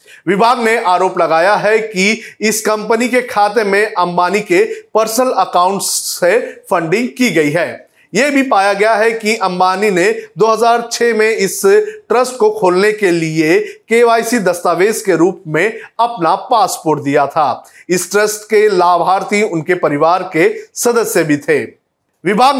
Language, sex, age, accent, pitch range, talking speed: Hindi, male, 40-59, native, 180-230 Hz, 150 wpm